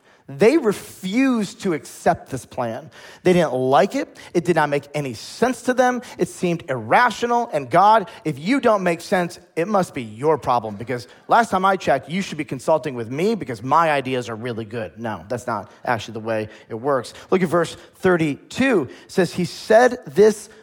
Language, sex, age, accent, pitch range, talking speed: English, male, 40-59, American, 130-195 Hz, 190 wpm